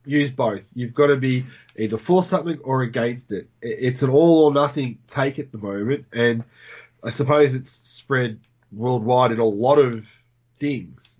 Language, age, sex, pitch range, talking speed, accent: English, 20-39, male, 120-150 Hz, 170 wpm, Australian